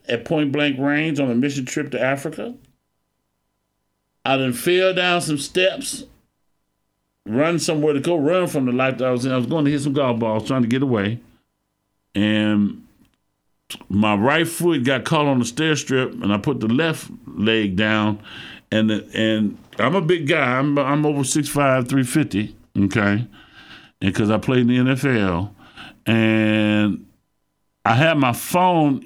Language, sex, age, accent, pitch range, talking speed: English, male, 50-69, American, 110-150 Hz, 165 wpm